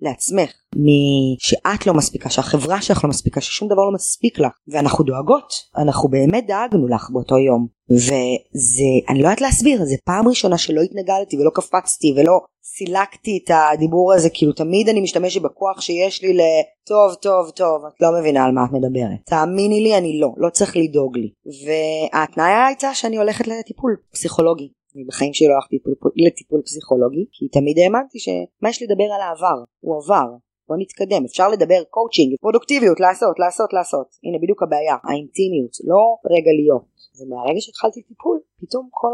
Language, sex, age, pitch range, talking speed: English, female, 20-39, 135-200 Hz, 145 wpm